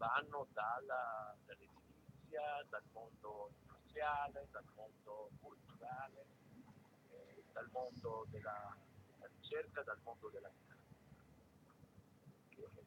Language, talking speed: Italian, 95 wpm